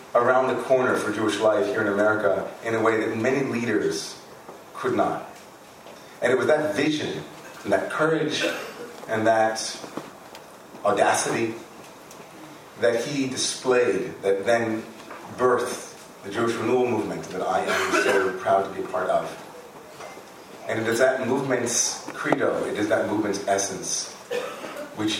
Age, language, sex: 40-59, English, male